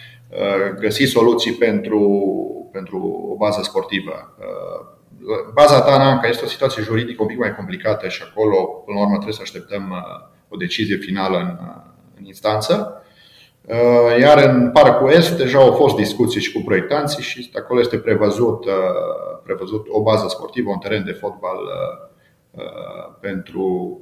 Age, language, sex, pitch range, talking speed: 40-59, Romanian, male, 105-150 Hz, 135 wpm